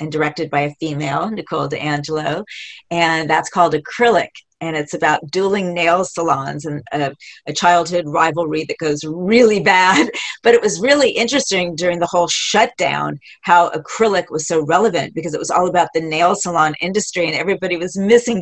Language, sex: English, female